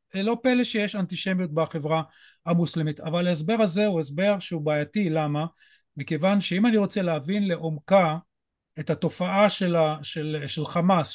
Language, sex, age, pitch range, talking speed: Hebrew, male, 40-59, 160-210 Hz, 145 wpm